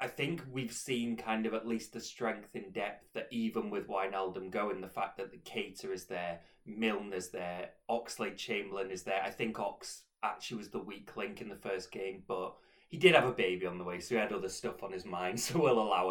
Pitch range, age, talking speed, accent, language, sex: 95-110 Hz, 20-39, 235 wpm, British, English, male